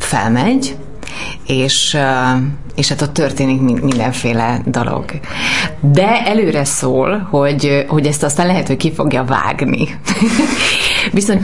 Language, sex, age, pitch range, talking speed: Hungarian, female, 30-49, 135-175 Hz, 110 wpm